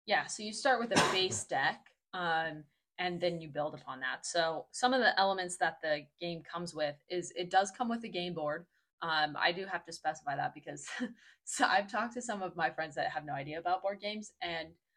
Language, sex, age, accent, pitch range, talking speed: English, female, 20-39, American, 160-205 Hz, 225 wpm